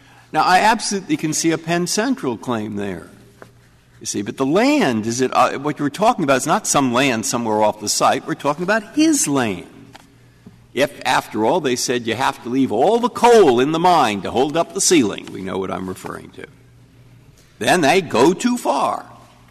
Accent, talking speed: American, 205 wpm